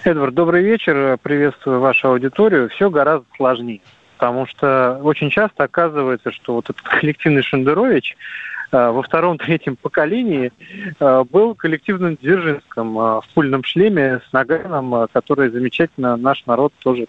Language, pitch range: Russian, 135-175 Hz